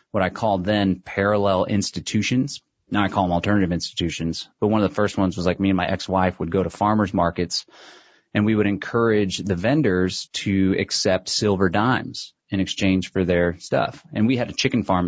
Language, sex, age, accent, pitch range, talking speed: English, male, 30-49, American, 95-125 Hz, 200 wpm